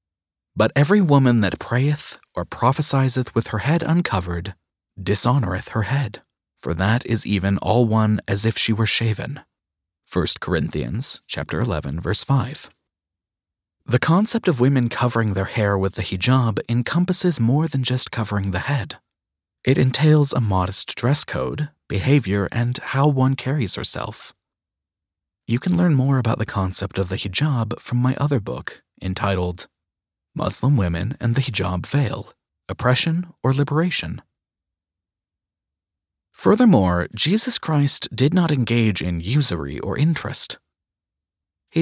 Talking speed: 135 wpm